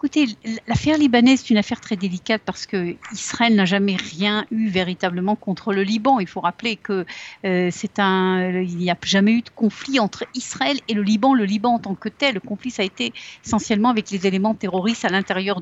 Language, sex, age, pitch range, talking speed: Russian, female, 50-69, 190-230 Hz, 205 wpm